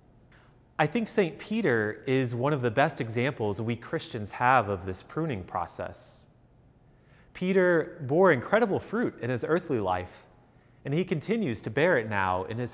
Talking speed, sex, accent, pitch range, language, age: 160 wpm, male, American, 115-150 Hz, English, 30-49